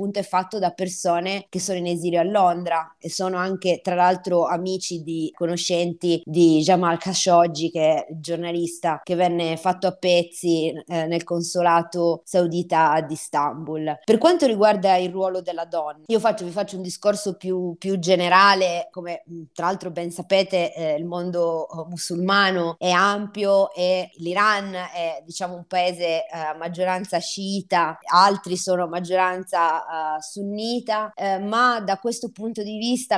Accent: native